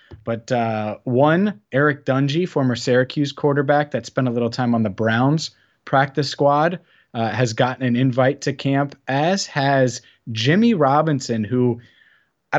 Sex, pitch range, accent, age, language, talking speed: male, 115-145 Hz, American, 30-49, English, 150 wpm